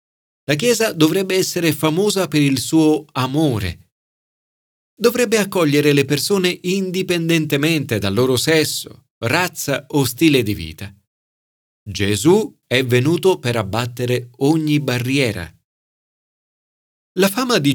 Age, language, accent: 40-59, Italian, native